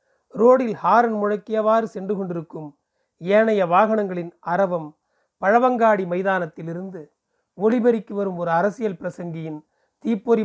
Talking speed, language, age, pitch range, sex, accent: 90 wpm, Tamil, 40-59, 180-230 Hz, male, native